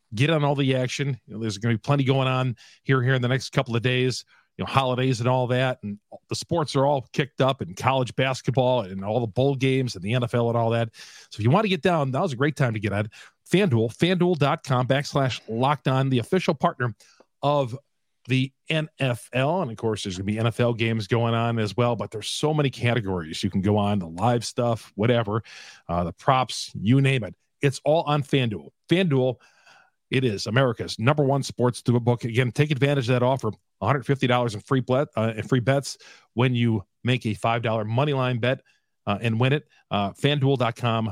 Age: 40-59